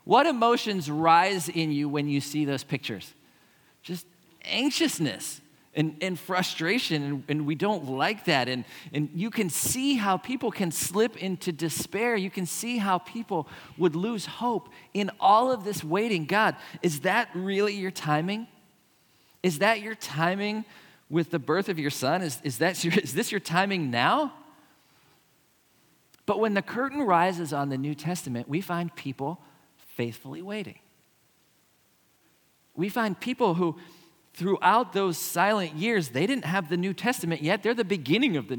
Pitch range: 150-200 Hz